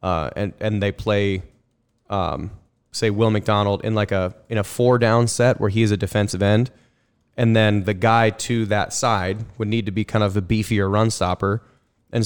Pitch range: 100-120 Hz